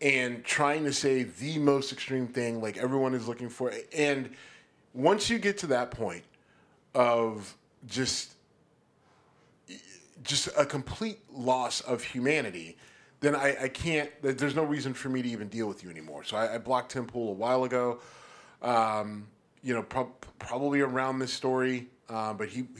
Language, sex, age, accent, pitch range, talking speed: English, male, 30-49, American, 110-135 Hz, 165 wpm